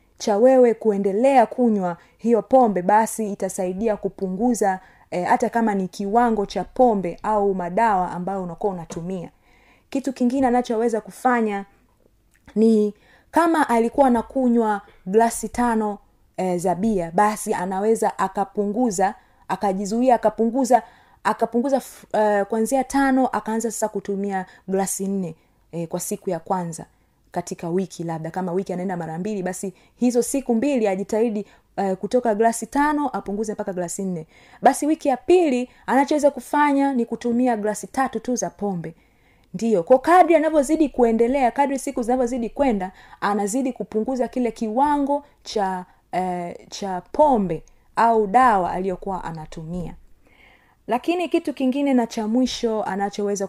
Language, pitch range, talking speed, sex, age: Swahili, 190-245 Hz, 130 wpm, female, 30-49